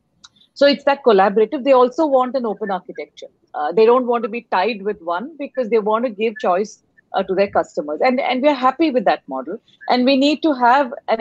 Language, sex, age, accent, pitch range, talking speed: English, female, 30-49, Indian, 195-265 Hz, 225 wpm